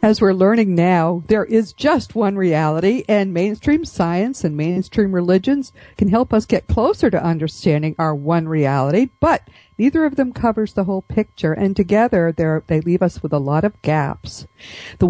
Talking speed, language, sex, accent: 175 wpm, English, female, American